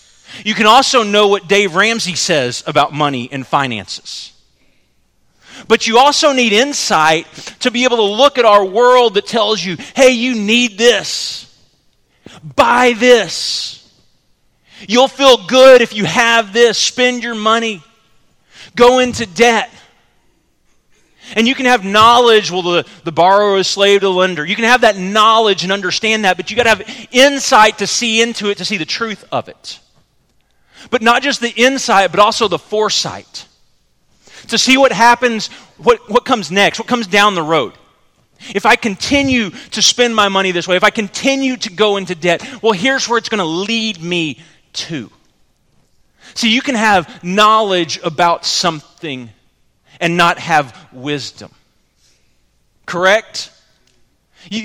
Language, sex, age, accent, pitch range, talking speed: English, male, 30-49, American, 175-240 Hz, 160 wpm